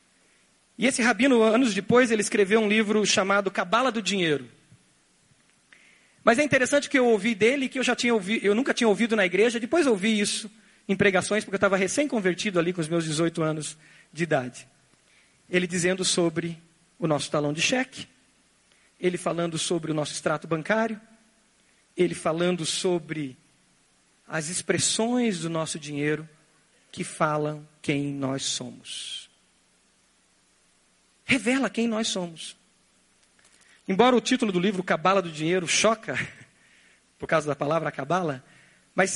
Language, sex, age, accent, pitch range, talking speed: Portuguese, male, 40-59, Brazilian, 155-220 Hz, 150 wpm